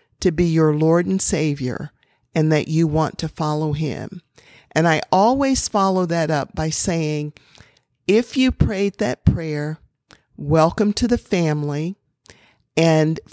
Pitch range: 155-200 Hz